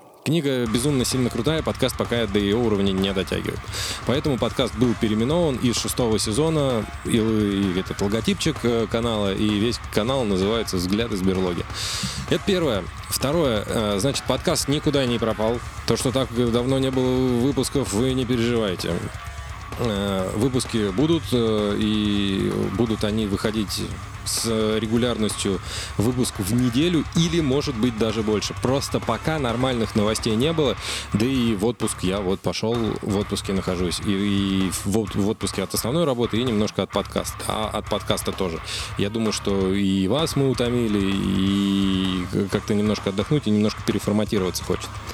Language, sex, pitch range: Russian, male, 100-125 Hz